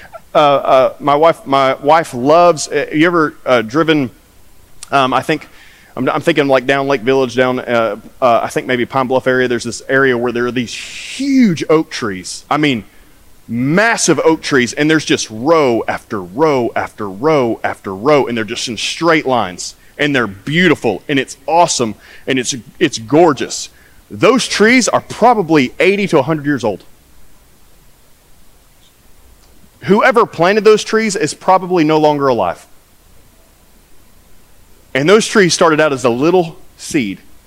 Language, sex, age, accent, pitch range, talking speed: English, male, 30-49, American, 120-155 Hz, 160 wpm